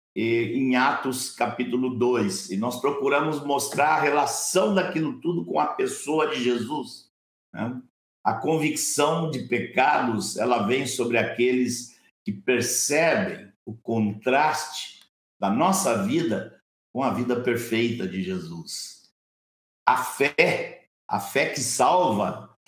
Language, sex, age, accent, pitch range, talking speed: Portuguese, male, 60-79, Brazilian, 115-155 Hz, 120 wpm